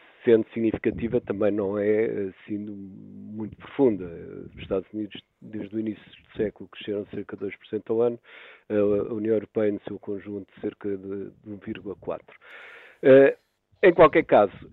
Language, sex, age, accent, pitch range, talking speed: Portuguese, male, 50-69, Portuguese, 100-125 Hz, 140 wpm